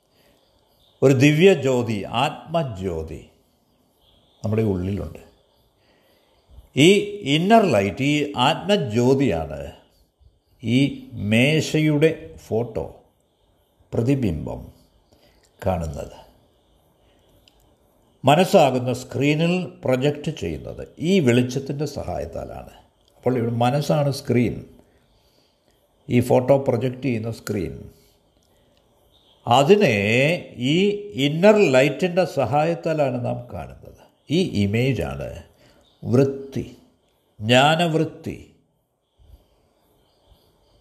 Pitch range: 105-150 Hz